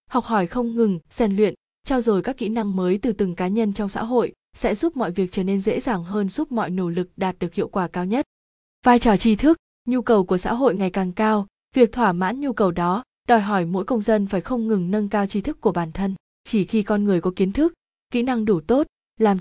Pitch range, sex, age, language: 185-235 Hz, female, 20-39, Vietnamese